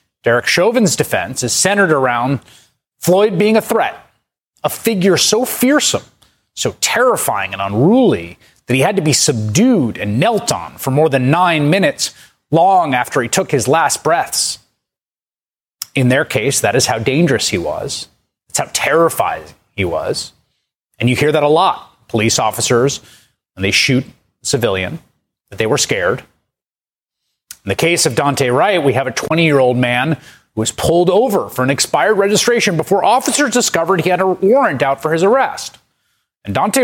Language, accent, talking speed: English, American, 165 wpm